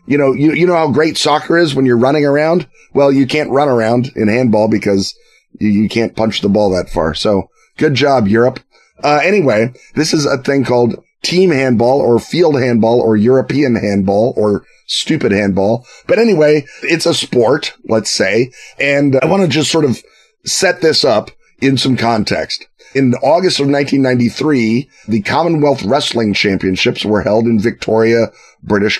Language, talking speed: English, 175 wpm